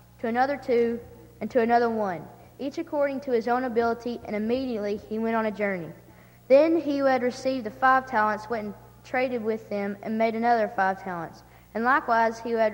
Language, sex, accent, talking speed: English, female, American, 205 wpm